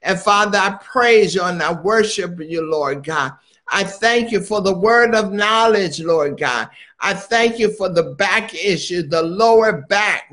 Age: 60-79